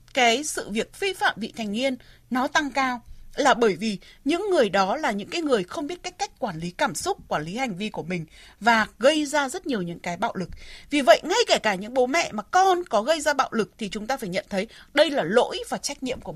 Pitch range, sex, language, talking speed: 225-335 Hz, female, Vietnamese, 265 wpm